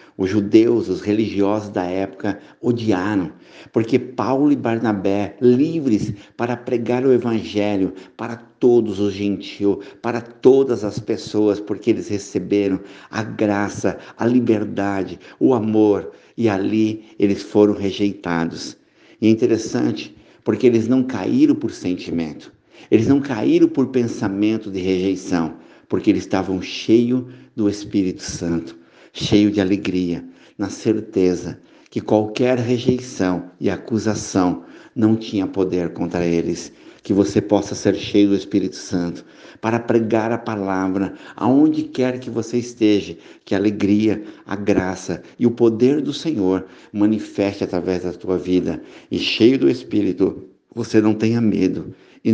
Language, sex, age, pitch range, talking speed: Portuguese, male, 60-79, 95-115 Hz, 135 wpm